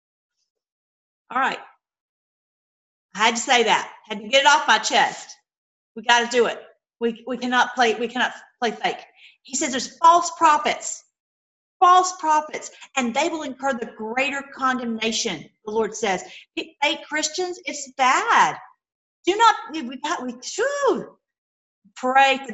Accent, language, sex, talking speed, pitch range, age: American, English, female, 145 wpm, 215-275 Hz, 40-59